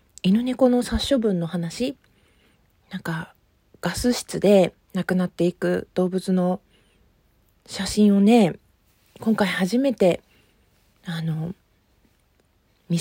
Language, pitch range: Japanese, 175-215 Hz